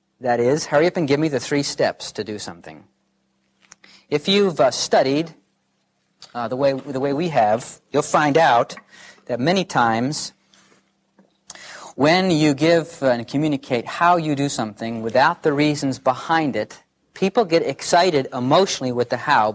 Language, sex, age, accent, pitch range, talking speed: English, male, 40-59, American, 120-160 Hz, 155 wpm